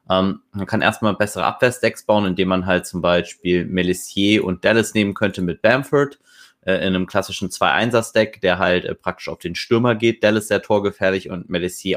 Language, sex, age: German, male, 20-39